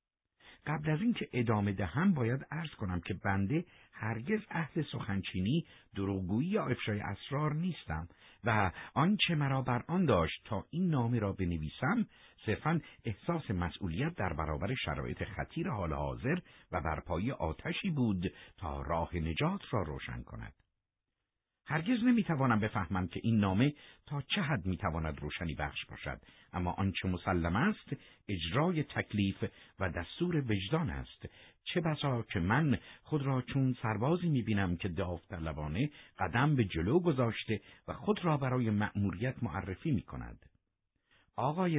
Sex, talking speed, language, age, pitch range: male, 140 wpm, Persian, 50-69, 95-145 Hz